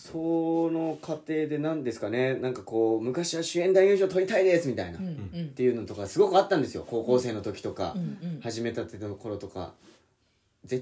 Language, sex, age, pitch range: Japanese, male, 30-49, 100-155 Hz